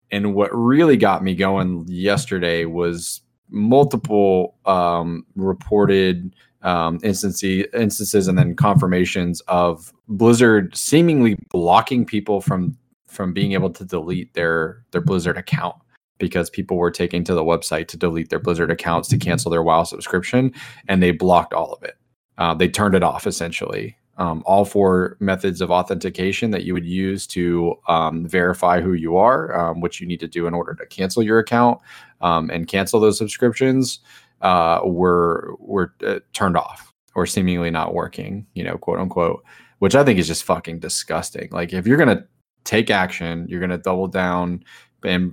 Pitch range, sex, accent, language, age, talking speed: 85-100 Hz, male, American, English, 20-39, 170 wpm